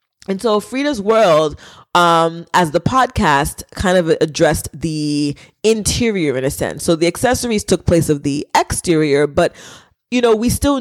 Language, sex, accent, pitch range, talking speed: English, female, American, 155-205 Hz, 160 wpm